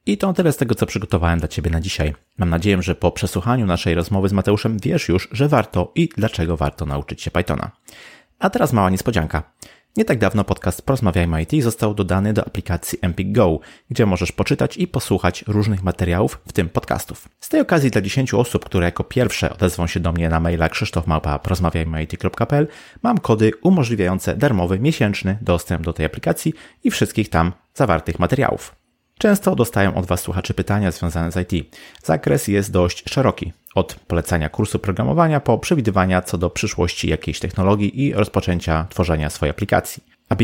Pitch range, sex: 85-110 Hz, male